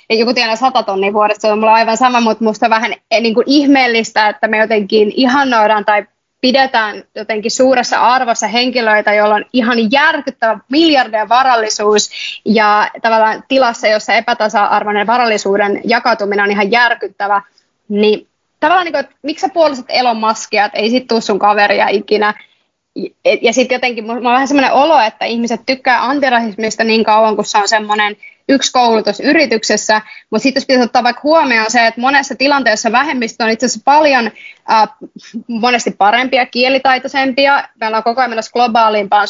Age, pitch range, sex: 20-39, 215-255 Hz, female